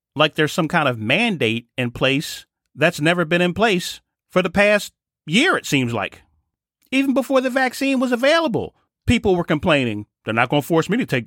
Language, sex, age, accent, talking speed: English, male, 40-59, American, 195 wpm